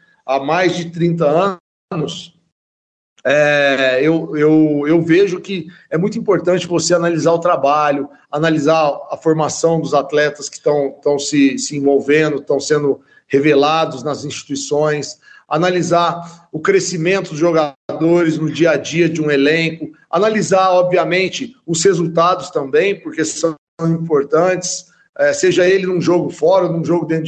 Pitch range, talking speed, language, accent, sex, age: 150-185 Hz, 130 wpm, Portuguese, Brazilian, male, 40-59